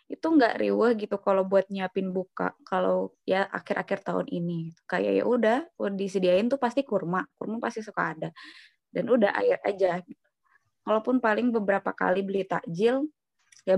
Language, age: Indonesian, 20-39